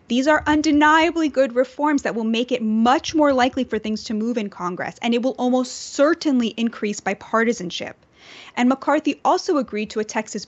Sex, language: female, English